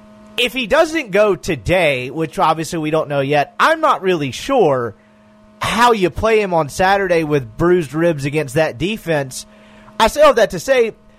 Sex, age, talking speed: male, 30-49, 175 wpm